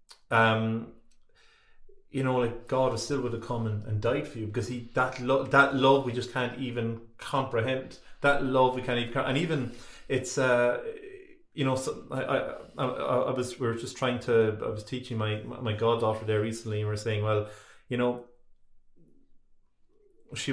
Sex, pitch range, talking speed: male, 110-130 Hz, 180 wpm